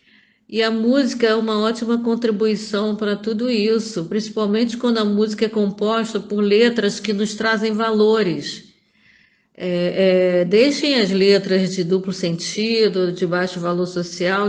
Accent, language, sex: Brazilian, Portuguese, female